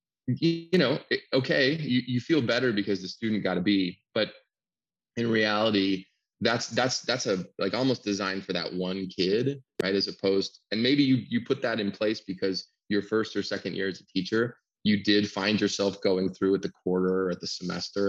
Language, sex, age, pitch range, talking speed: English, male, 20-39, 95-110 Hz, 200 wpm